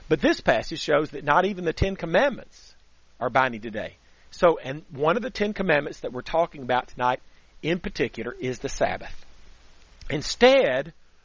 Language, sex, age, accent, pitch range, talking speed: English, male, 40-59, American, 110-170 Hz, 165 wpm